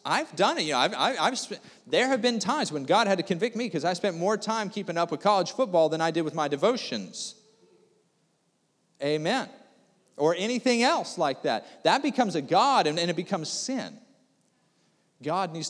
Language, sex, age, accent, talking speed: English, male, 40-59, American, 200 wpm